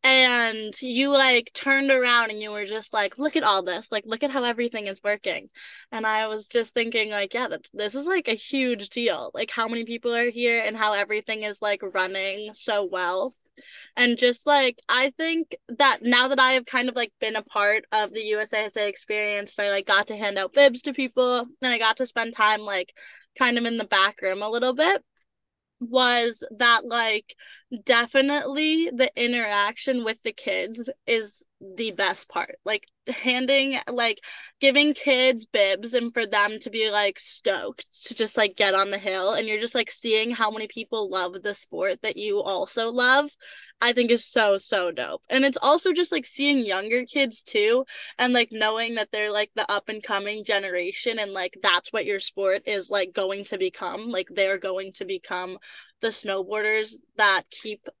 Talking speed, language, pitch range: 195 wpm, English, 205-255 Hz